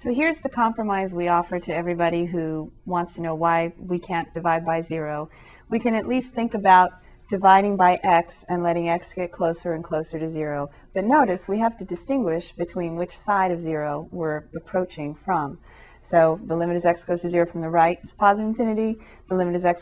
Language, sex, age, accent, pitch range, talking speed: English, female, 30-49, American, 170-210 Hz, 205 wpm